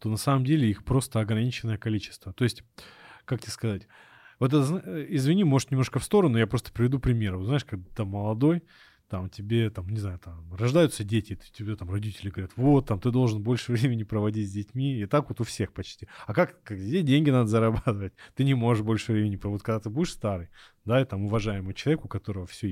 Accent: native